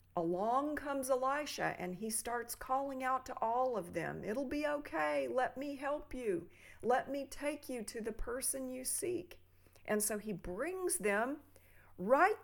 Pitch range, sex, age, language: 195-280 Hz, female, 50-69, English